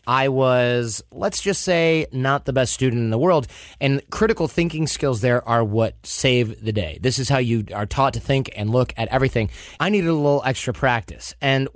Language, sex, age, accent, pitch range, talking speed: English, male, 30-49, American, 115-150 Hz, 210 wpm